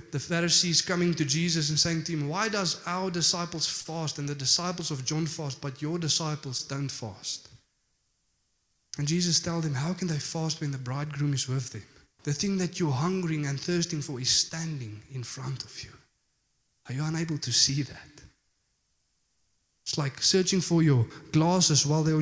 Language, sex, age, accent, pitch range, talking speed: English, male, 20-39, South African, 135-170 Hz, 180 wpm